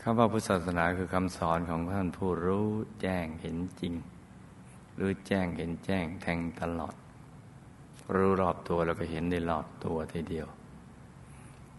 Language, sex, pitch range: Thai, male, 85-95 Hz